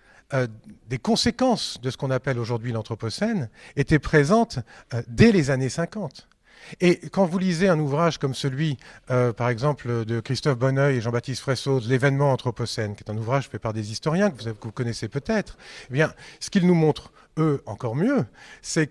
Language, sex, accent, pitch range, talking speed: French, male, French, 130-175 Hz, 175 wpm